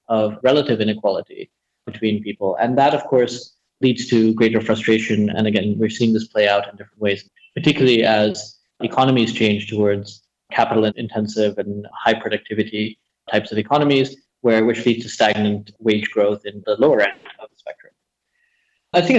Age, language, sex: 20-39, English, male